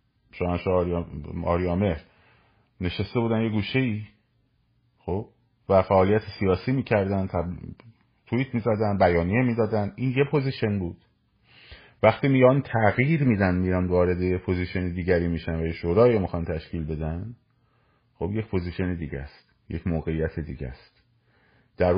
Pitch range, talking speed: 95-120 Hz, 130 wpm